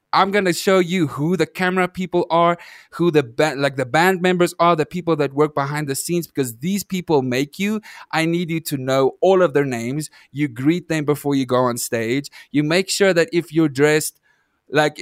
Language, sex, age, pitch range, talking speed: English, male, 20-39, 125-155 Hz, 220 wpm